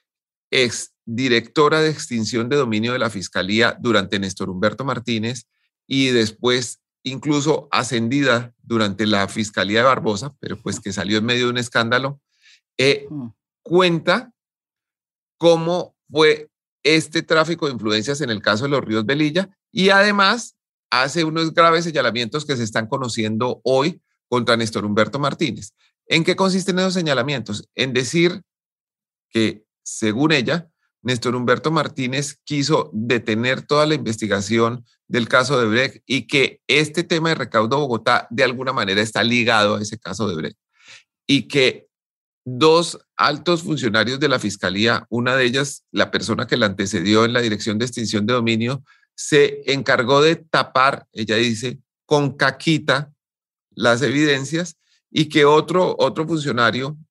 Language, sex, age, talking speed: English, male, 30-49, 145 wpm